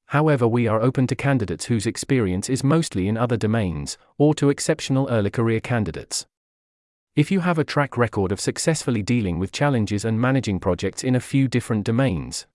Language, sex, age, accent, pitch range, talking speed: English, male, 40-59, British, 110-145 Hz, 180 wpm